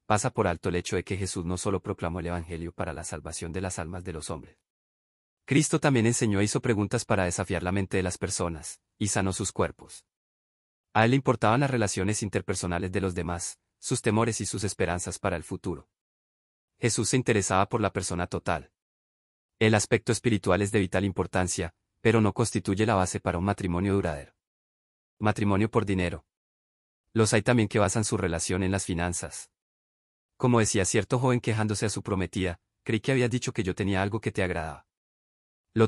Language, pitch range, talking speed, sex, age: Spanish, 85-110 Hz, 190 wpm, male, 30-49